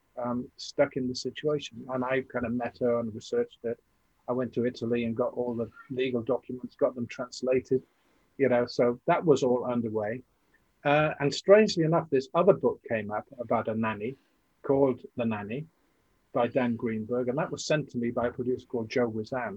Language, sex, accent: English, male, British